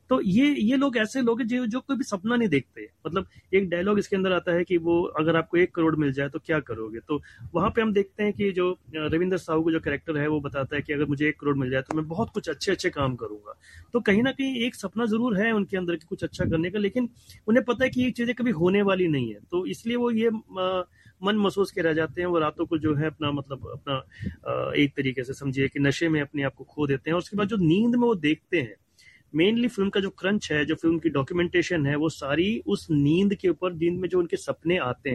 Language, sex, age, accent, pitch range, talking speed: Hindi, male, 30-49, native, 145-195 Hz, 260 wpm